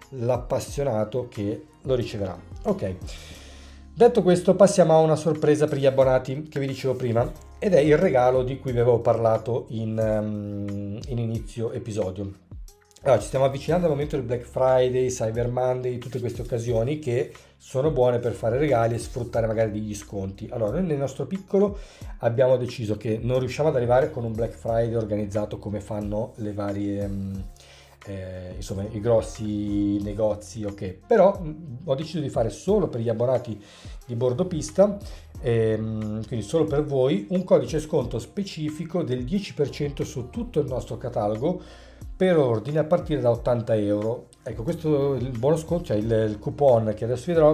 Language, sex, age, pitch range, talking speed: Italian, male, 40-59, 105-140 Hz, 170 wpm